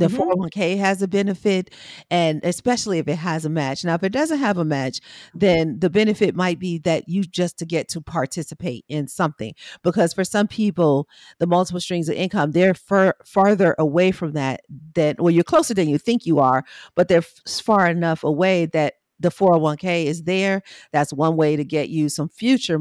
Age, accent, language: 40-59, American, English